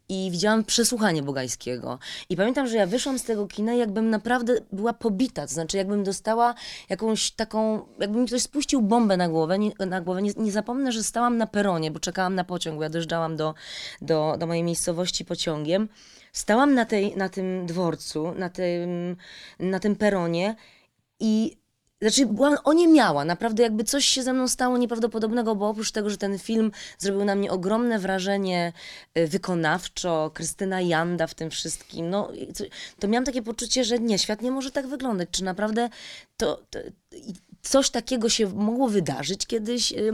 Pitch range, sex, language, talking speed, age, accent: 180-230 Hz, female, Polish, 170 wpm, 20-39, native